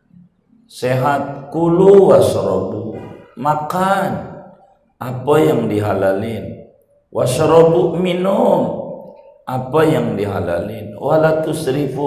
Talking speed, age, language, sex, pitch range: 65 wpm, 50-69, Indonesian, male, 100-150 Hz